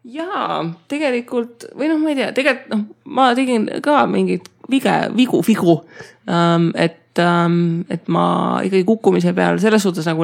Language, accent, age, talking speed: English, Finnish, 20-39, 140 wpm